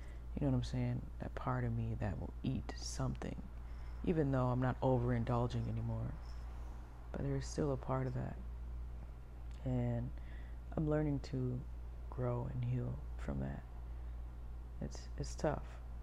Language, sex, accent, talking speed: English, female, American, 145 wpm